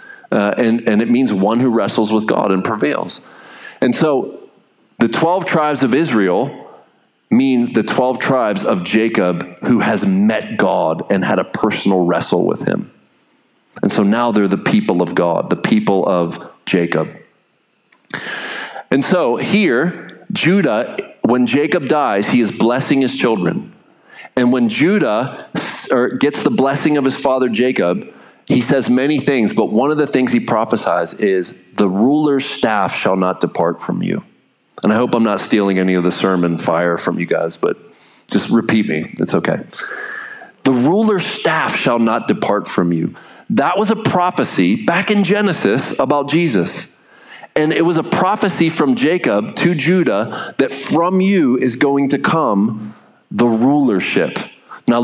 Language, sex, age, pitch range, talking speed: English, male, 40-59, 115-180 Hz, 160 wpm